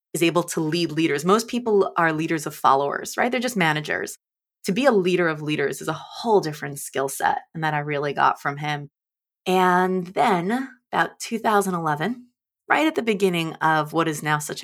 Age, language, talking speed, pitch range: 20-39, English, 195 wpm, 155-215 Hz